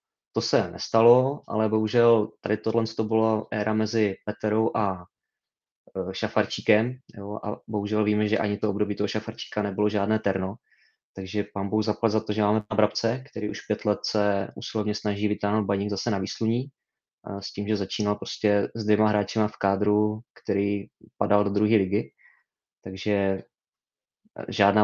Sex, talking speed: male, 155 wpm